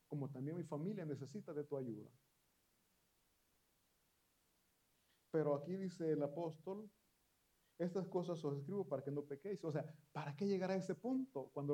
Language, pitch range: Italian, 140-190 Hz